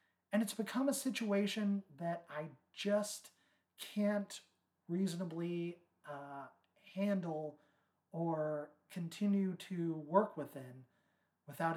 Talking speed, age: 90 wpm, 30-49